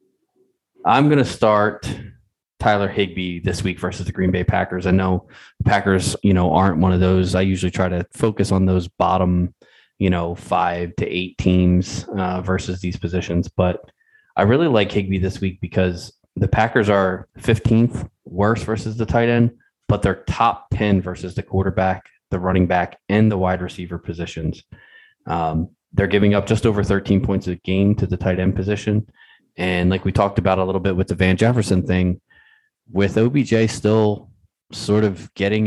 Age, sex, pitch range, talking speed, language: 20-39, male, 90-110 Hz, 180 wpm, English